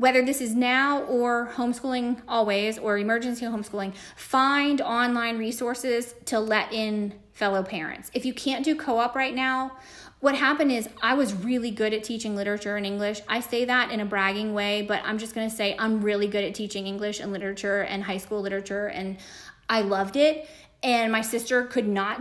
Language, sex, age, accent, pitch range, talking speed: English, female, 30-49, American, 210-265 Hz, 190 wpm